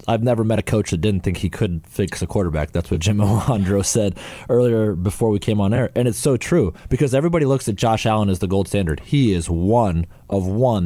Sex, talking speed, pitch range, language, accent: male, 240 wpm, 100-120 Hz, English, American